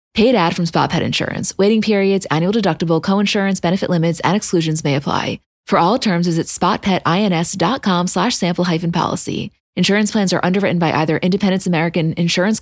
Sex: female